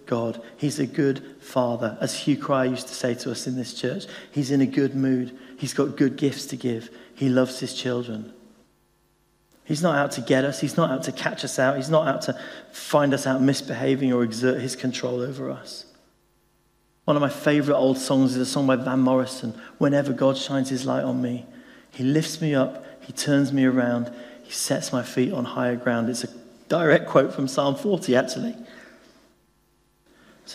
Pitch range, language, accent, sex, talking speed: 130-150 Hz, English, British, male, 200 wpm